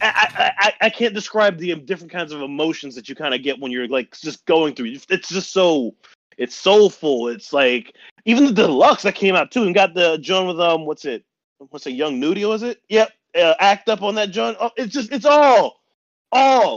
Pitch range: 155-220 Hz